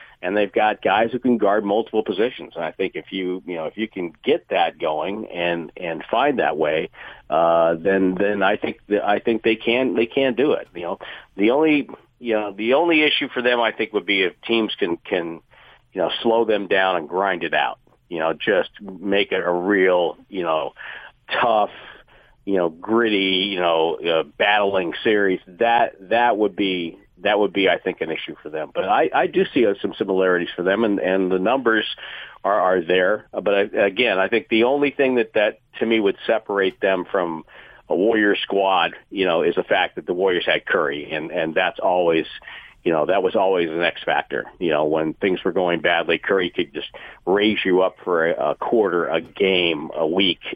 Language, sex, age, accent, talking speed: English, male, 50-69, American, 210 wpm